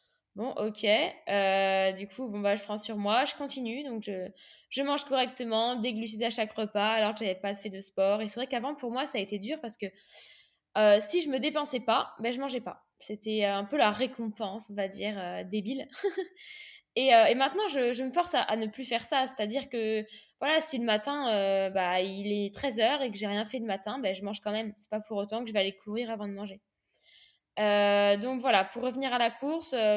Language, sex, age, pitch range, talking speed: French, female, 10-29, 205-260 Hz, 240 wpm